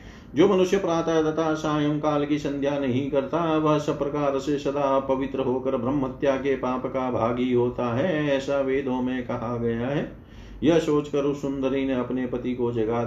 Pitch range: 120-140 Hz